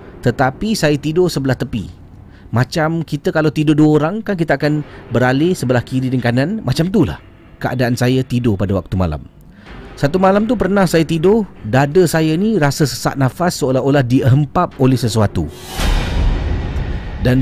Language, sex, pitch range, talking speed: Malay, male, 110-150 Hz, 150 wpm